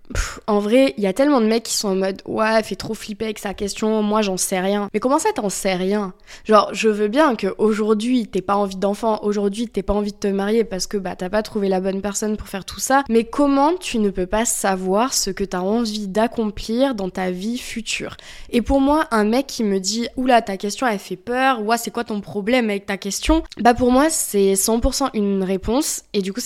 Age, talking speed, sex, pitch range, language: 20-39, 260 wpm, female, 195-235 Hz, French